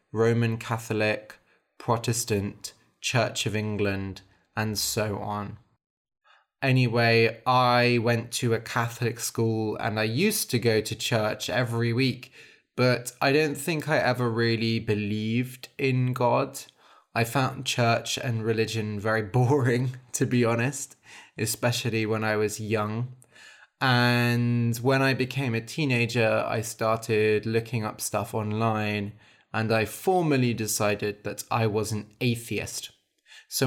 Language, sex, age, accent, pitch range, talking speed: English, male, 20-39, British, 110-125 Hz, 130 wpm